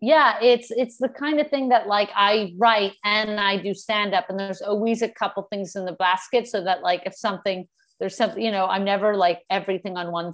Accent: American